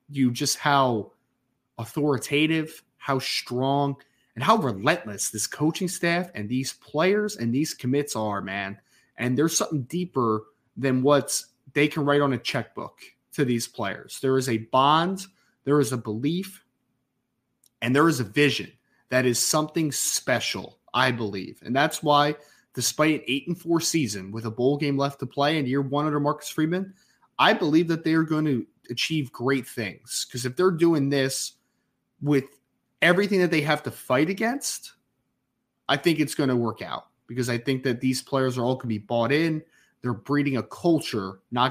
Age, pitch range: 20-39, 120-150 Hz